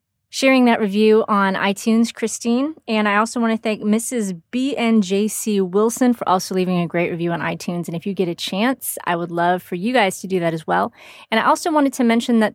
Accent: American